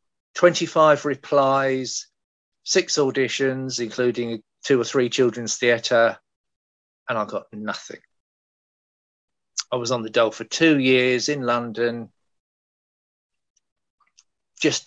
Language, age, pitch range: English, 50-69, 120-160 Hz